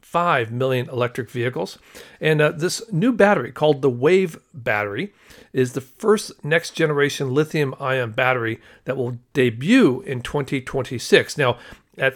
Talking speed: 135 wpm